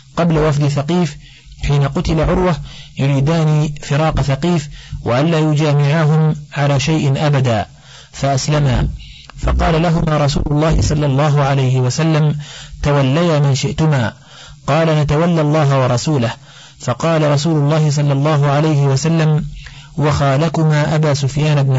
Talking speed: 115 wpm